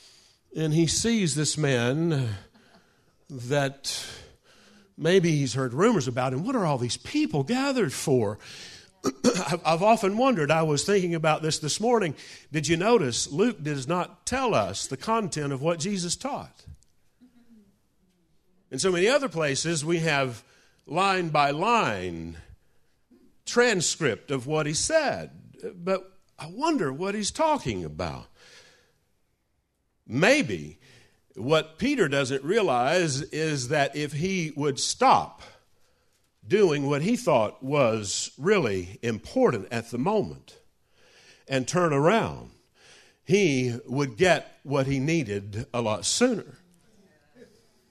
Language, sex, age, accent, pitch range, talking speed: English, male, 50-69, American, 135-190 Hz, 125 wpm